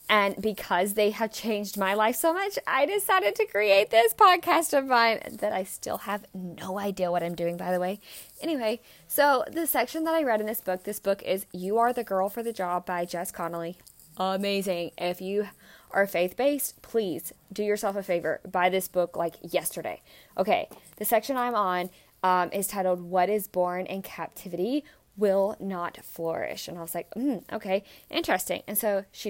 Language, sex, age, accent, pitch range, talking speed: English, female, 20-39, American, 180-220 Hz, 190 wpm